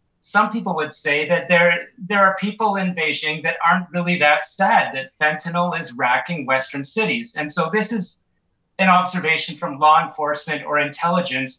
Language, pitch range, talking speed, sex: English, 150-180 Hz, 170 wpm, male